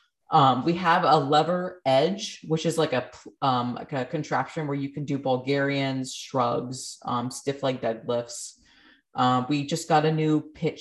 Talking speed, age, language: 170 wpm, 20-39, English